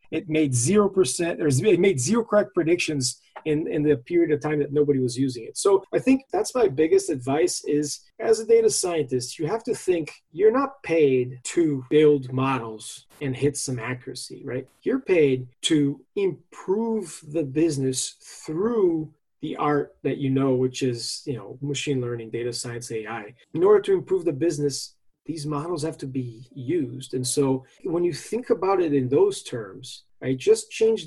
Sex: male